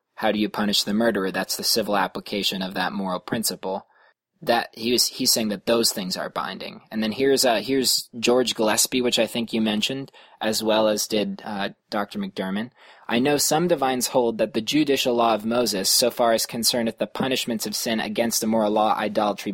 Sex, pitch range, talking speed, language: male, 110-125 Hz, 205 wpm, English